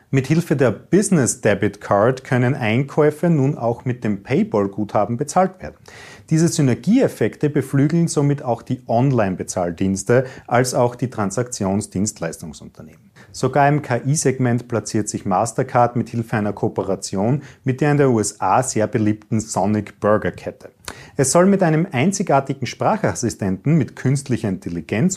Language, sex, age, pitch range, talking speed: German, male, 40-59, 105-140 Hz, 130 wpm